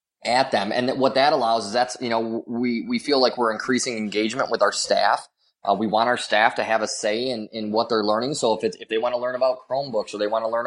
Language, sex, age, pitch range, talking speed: English, male, 20-39, 105-125 Hz, 270 wpm